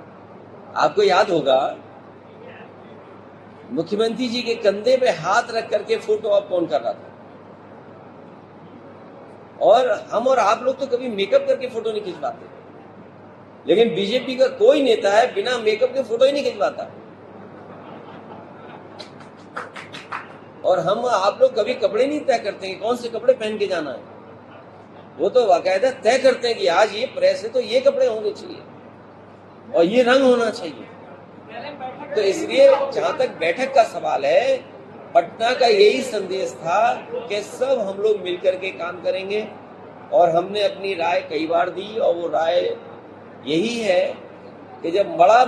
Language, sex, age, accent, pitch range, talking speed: Hindi, male, 50-69, native, 190-275 Hz, 155 wpm